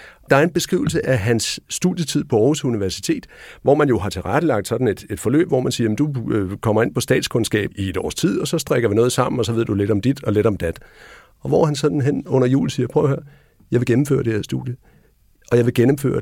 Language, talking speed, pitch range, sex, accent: Danish, 255 wpm, 105-130 Hz, male, native